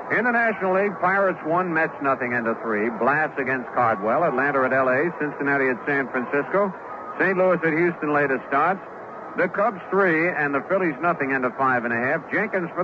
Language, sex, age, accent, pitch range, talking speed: English, male, 60-79, American, 135-180 Hz, 185 wpm